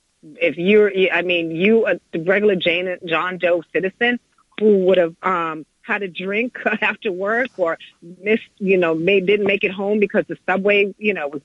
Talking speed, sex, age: 195 wpm, female, 30-49